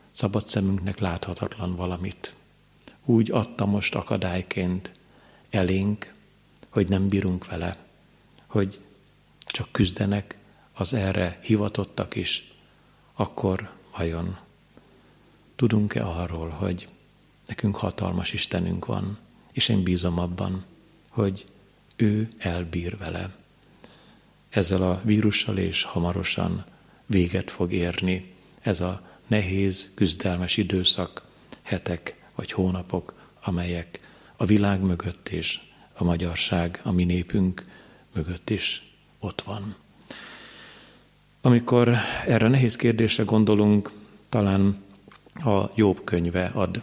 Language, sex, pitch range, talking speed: Hungarian, male, 90-105 Hz, 100 wpm